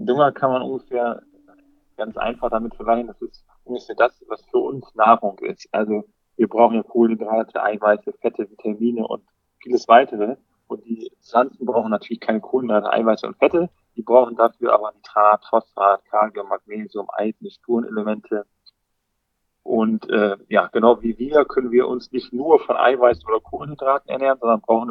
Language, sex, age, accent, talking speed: German, male, 40-59, German, 160 wpm